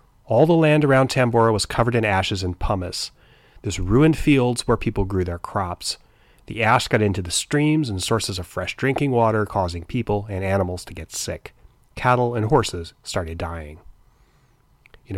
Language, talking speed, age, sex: English, 175 wpm, 30-49, male